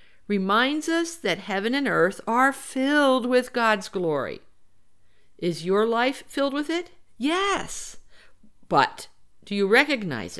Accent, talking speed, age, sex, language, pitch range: American, 125 wpm, 50-69, female, English, 165-235 Hz